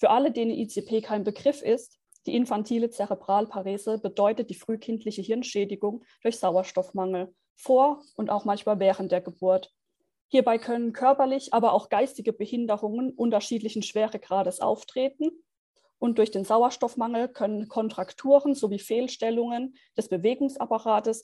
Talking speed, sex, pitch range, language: 120 wpm, female, 205-255 Hz, German